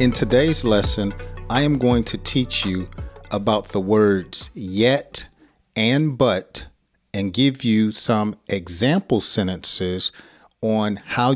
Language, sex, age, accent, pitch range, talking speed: English, male, 40-59, American, 95-125 Hz, 120 wpm